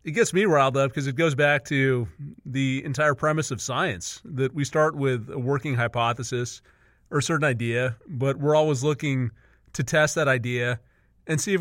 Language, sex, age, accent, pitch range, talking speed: English, male, 30-49, American, 125-155 Hz, 190 wpm